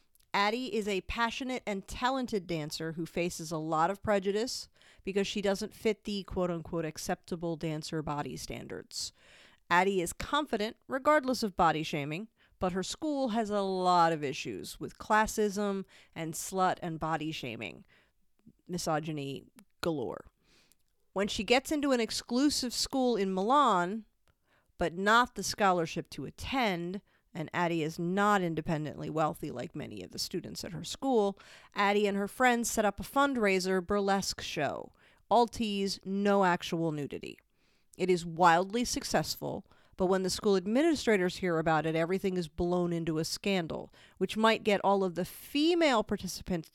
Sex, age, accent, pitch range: female, 40-59, American, 165-220 Hz